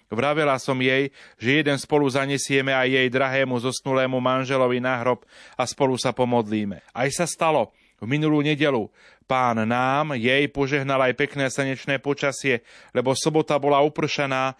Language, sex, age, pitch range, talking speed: Slovak, male, 30-49, 125-145 Hz, 150 wpm